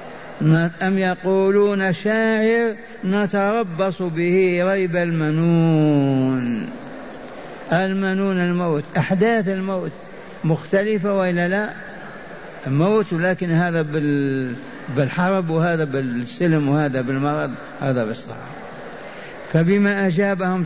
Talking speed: 75 wpm